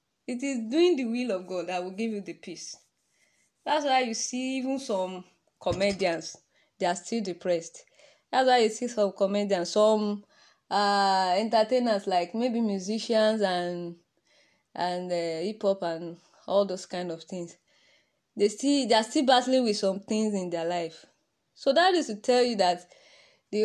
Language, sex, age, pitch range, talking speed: English, female, 20-39, 185-250 Hz, 165 wpm